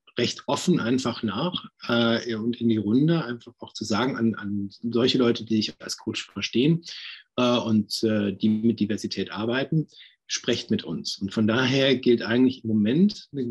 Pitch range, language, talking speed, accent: 110-140 Hz, German, 180 wpm, German